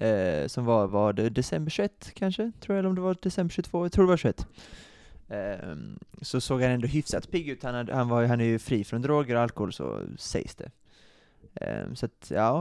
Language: Swedish